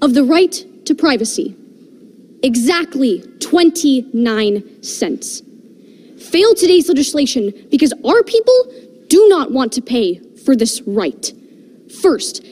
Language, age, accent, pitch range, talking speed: English, 20-39, American, 280-380 Hz, 110 wpm